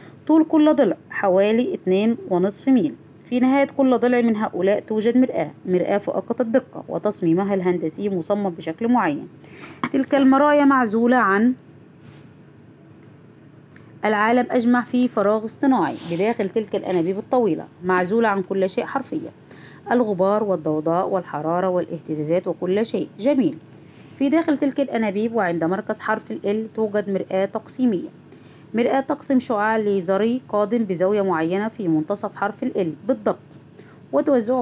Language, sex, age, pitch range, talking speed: Arabic, female, 20-39, 190-245 Hz, 125 wpm